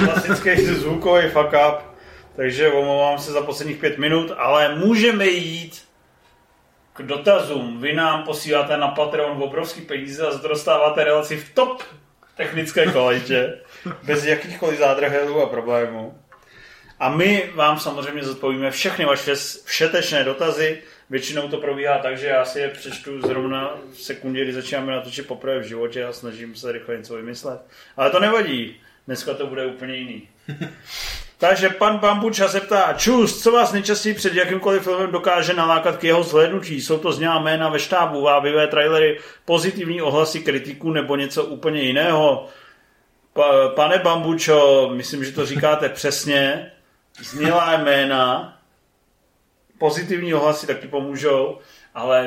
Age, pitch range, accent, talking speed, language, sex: 30-49, 135-165 Hz, native, 140 wpm, Czech, male